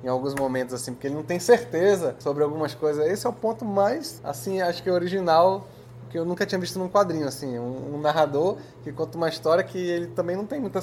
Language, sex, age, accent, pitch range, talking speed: Portuguese, male, 20-39, Brazilian, 130-165 Hz, 240 wpm